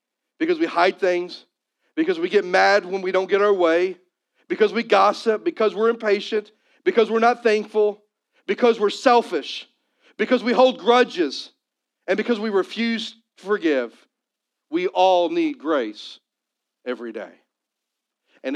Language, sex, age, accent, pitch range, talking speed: English, male, 40-59, American, 155-235 Hz, 140 wpm